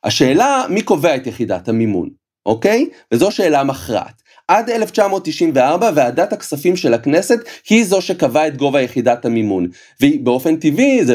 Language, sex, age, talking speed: Hebrew, male, 30-49, 140 wpm